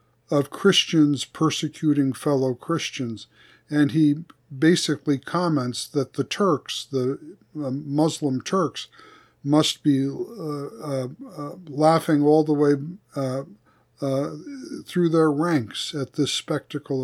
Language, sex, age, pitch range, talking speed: English, male, 60-79, 135-160 Hz, 110 wpm